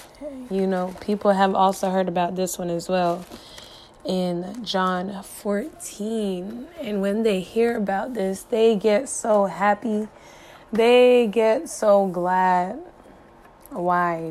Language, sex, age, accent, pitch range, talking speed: English, female, 20-39, American, 180-210 Hz, 120 wpm